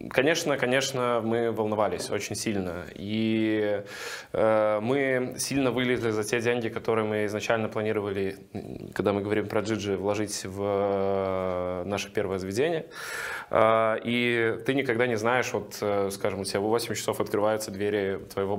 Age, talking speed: 20-39, 150 wpm